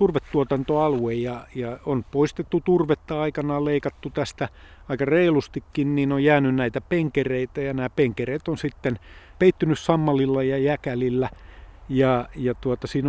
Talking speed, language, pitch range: 120 wpm, Finnish, 125-145 Hz